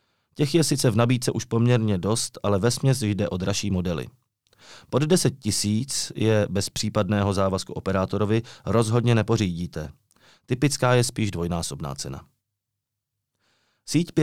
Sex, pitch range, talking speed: male, 100-130 Hz, 130 wpm